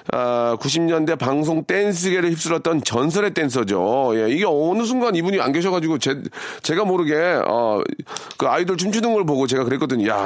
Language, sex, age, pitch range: Korean, male, 40-59, 145-205 Hz